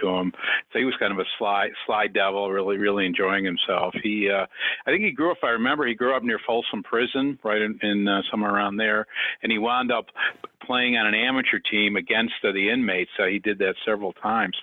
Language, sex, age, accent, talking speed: English, male, 50-69, American, 225 wpm